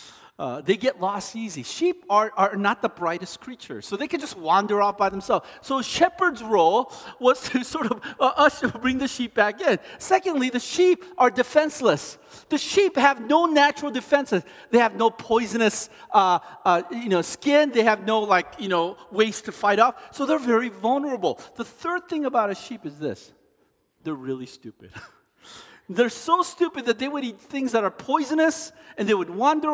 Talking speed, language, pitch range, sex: 195 wpm, English, 175-275 Hz, male